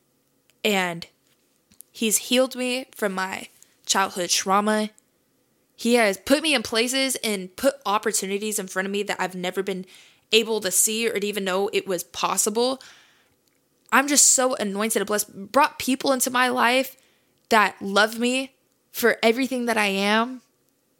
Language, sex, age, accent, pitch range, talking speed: English, female, 10-29, American, 205-260 Hz, 150 wpm